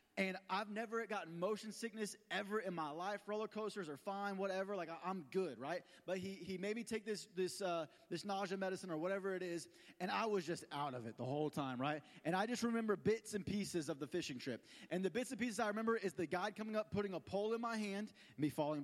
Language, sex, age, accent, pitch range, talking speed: English, male, 20-39, American, 180-230 Hz, 250 wpm